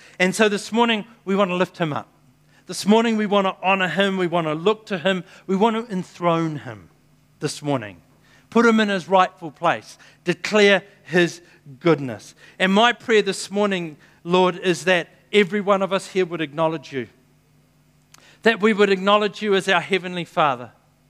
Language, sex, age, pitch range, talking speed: English, male, 50-69, 150-195 Hz, 180 wpm